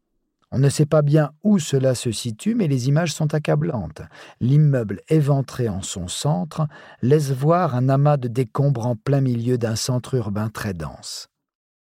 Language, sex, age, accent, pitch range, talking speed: French, male, 50-69, French, 110-145 Hz, 165 wpm